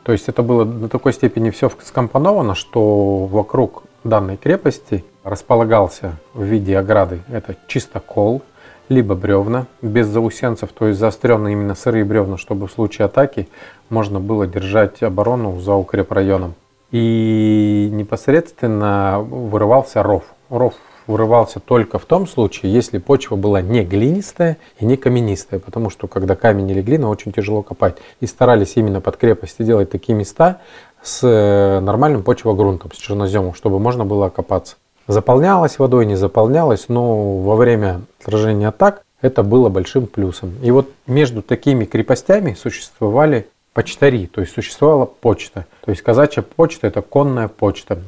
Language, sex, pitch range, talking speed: Russian, male, 100-125 Hz, 145 wpm